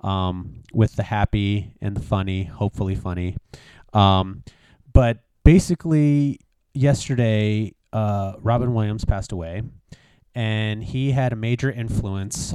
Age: 30-49